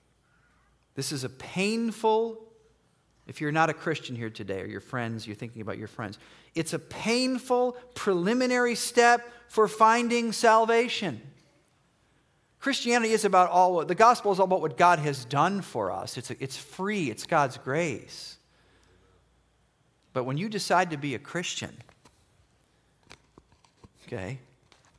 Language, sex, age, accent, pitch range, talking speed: English, male, 40-59, American, 125-210 Hz, 140 wpm